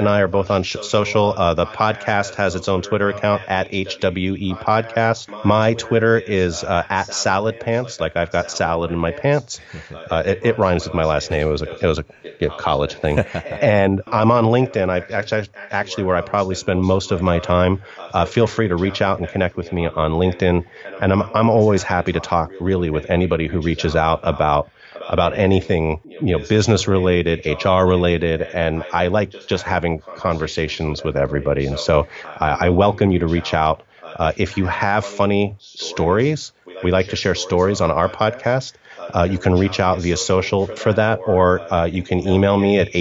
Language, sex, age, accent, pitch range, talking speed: English, male, 30-49, American, 85-100 Hz, 200 wpm